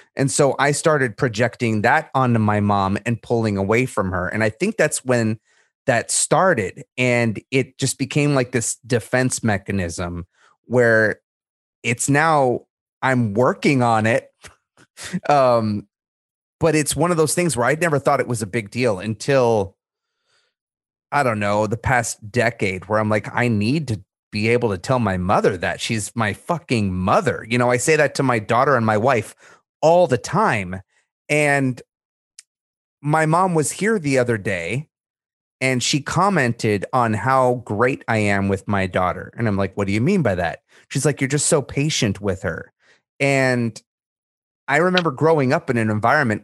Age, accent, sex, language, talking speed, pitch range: 30-49, American, male, English, 175 wpm, 105-140 Hz